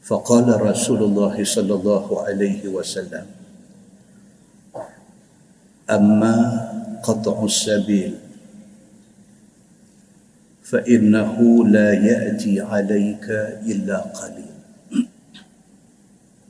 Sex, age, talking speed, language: male, 50-69, 60 wpm, Malay